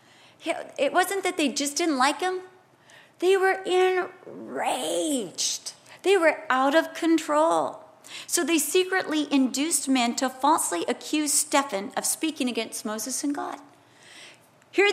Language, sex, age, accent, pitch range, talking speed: English, female, 40-59, American, 275-340 Hz, 130 wpm